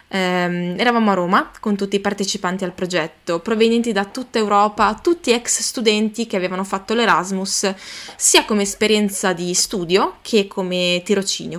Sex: female